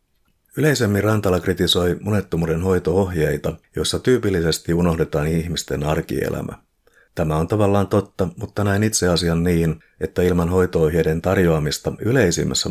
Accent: native